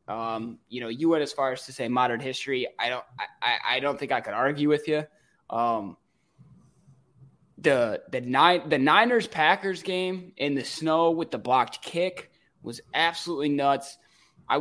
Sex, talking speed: male, 175 wpm